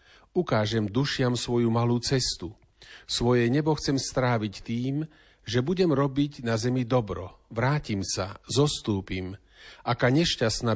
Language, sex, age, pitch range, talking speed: Slovak, male, 40-59, 110-140 Hz, 115 wpm